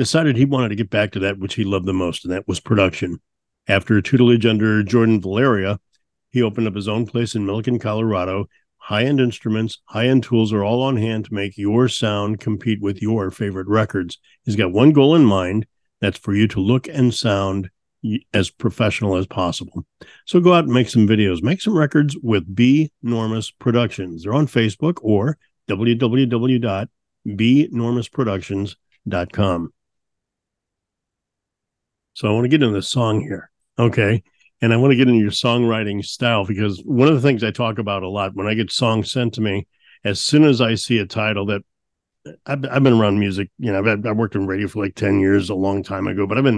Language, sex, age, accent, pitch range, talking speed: English, male, 50-69, American, 100-120 Hz, 195 wpm